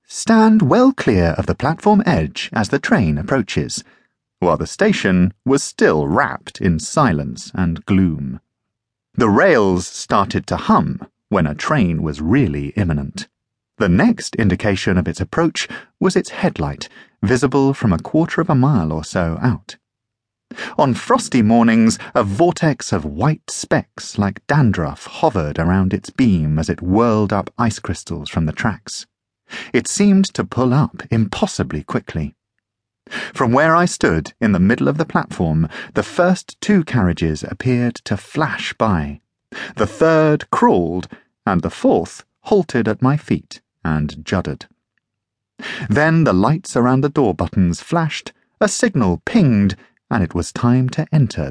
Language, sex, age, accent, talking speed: English, male, 30-49, British, 150 wpm